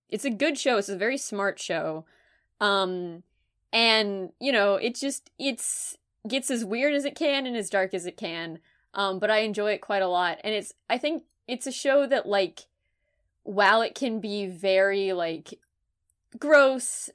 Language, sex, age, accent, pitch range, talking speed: English, female, 20-39, American, 180-225 Hz, 180 wpm